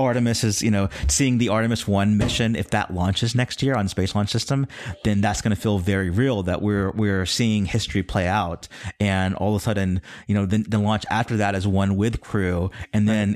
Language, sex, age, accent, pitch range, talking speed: English, male, 30-49, American, 95-110 Hz, 225 wpm